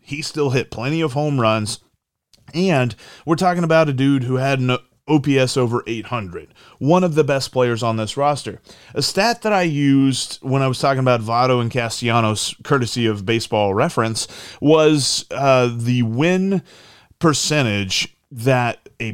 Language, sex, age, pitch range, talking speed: English, male, 30-49, 115-145 Hz, 160 wpm